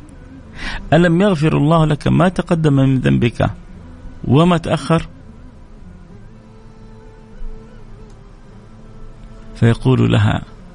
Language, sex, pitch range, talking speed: Arabic, male, 105-150 Hz, 65 wpm